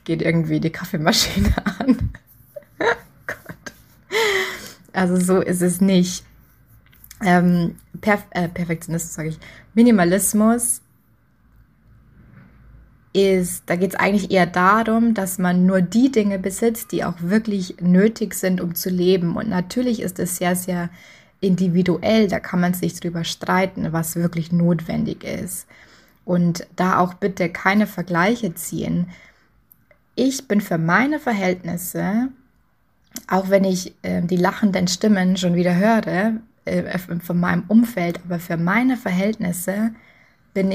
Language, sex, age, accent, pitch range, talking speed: German, female, 20-39, German, 175-205 Hz, 130 wpm